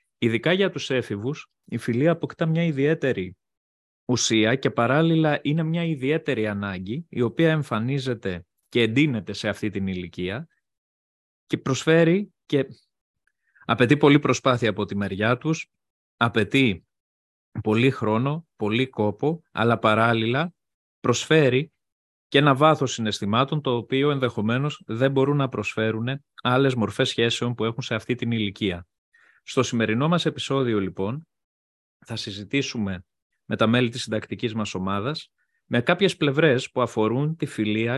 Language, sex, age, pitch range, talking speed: Greek, male, 20-39, 105-145 Hz, 135 wpm